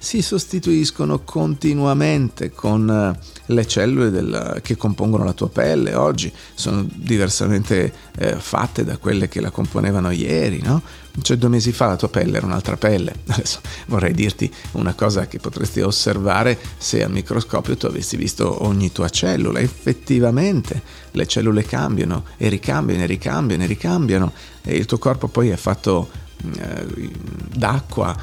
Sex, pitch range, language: male, 95-120 Hz, Italian